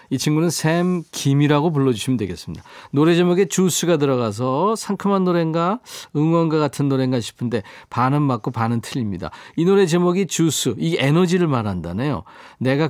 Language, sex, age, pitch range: Korean, male, 40-59, 120-170 Hz